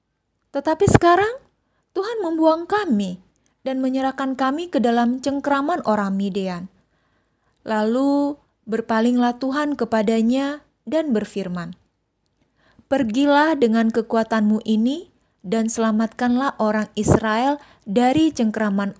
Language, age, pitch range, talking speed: Indonesian, 20-39, 215-285 Hz, 90 wpm